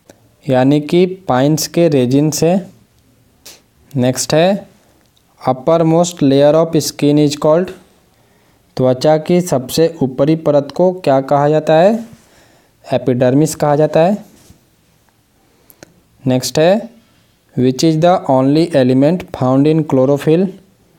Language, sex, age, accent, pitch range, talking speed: English, male, 20-39, Indian, 130-165 Hz, 110 wpm